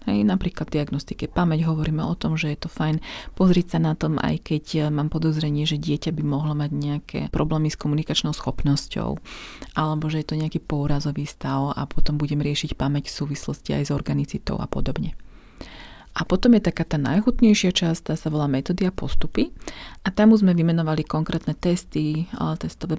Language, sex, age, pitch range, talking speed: Slovak, female, 40-59, 145-165 Hz, 175 wpm